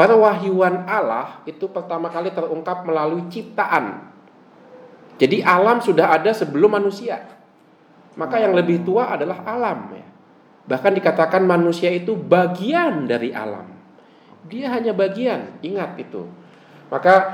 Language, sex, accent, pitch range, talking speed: Indonesian, male, native, 145-210 Hz, 120 wpm